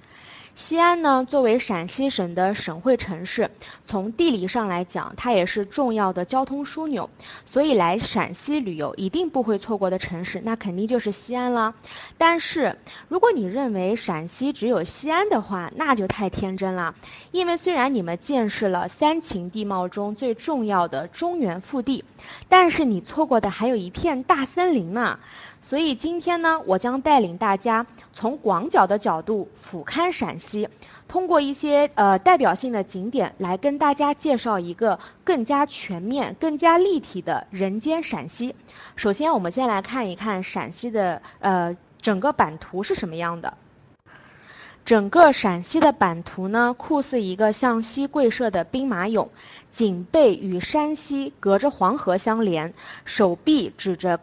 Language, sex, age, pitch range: Chinese, female, 20-39, 195-285 Hz